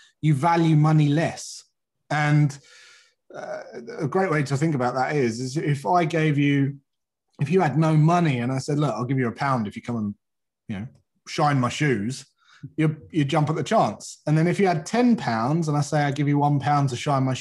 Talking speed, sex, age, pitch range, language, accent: 225 wpm, male, 30-49, 135-175 Hz, English, British